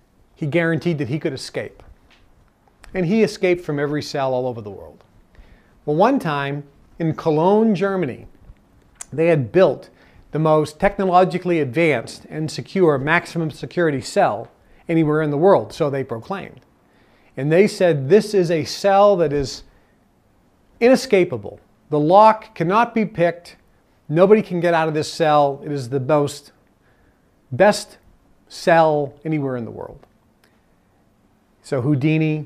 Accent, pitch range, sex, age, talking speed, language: American, 145-170 Hz, male, 40-59, 135 wpm, English